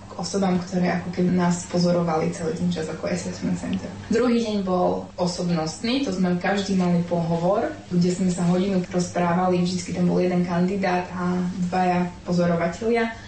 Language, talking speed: Slovak, 155 wpm